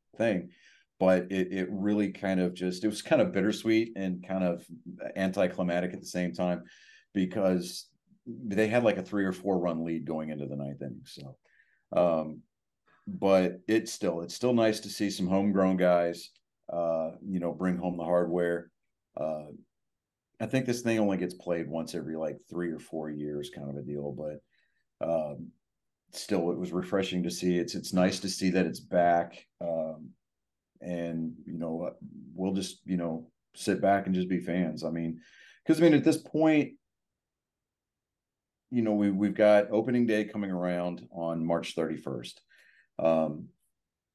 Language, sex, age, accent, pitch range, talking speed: English, male, 40-59, American, 85-100 Hz, 170 wpm